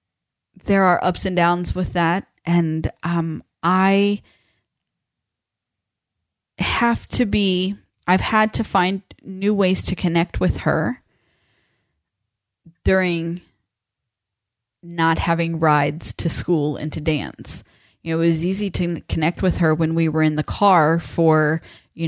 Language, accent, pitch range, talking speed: English, American, 150-195 Hz, 135 wpm